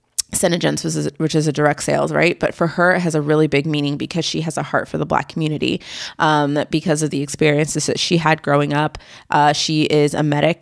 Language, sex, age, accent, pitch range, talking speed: English, female, 20-39, American, 145-165 Hz, 225 wpm